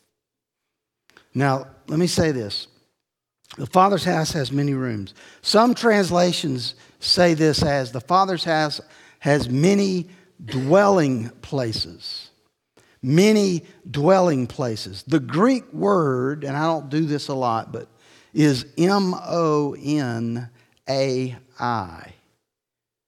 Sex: male